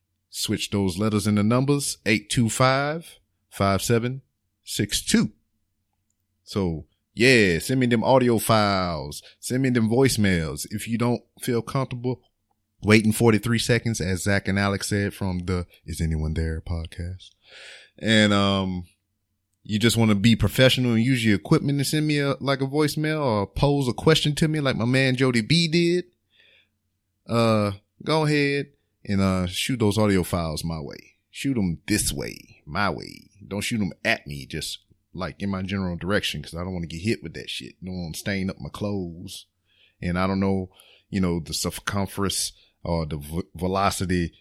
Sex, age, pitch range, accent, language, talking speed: male, 30-49, 90-115 Hz, American, English, 170 wpm